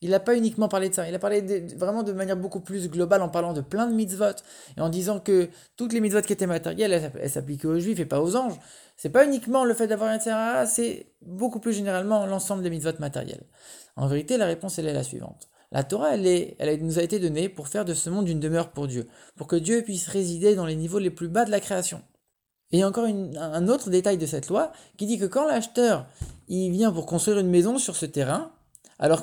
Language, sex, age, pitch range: English, male, 20-39, 150-210 Hz